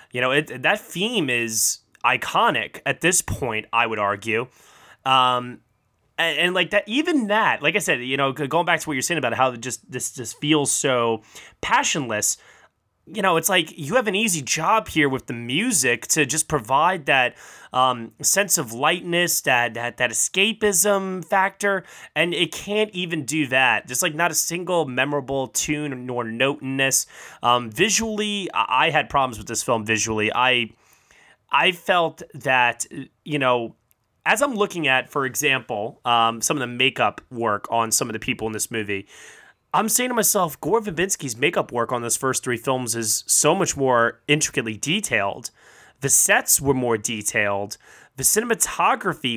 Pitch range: 120-180 Hz